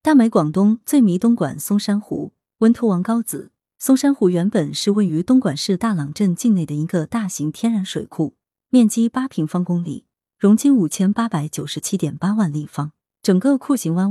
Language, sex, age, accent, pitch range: Chinese, female, 30-49, native, 160-230 Hz